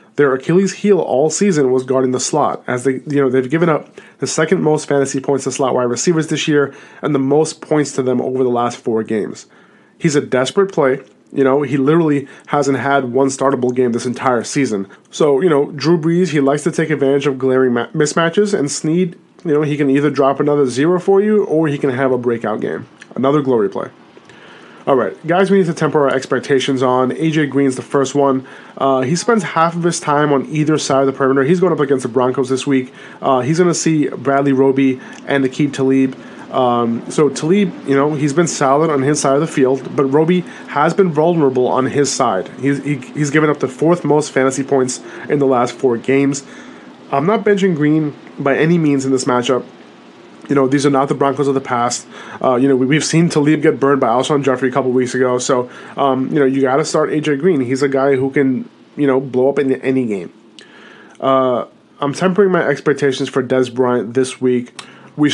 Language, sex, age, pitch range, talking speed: English, male, 30-49, 130-150 Hz, 220 wpm